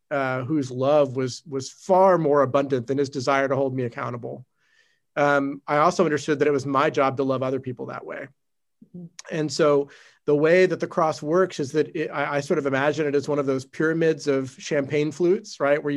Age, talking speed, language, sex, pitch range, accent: 40-59, 215 wpm, English, male, 135-155 Hz, American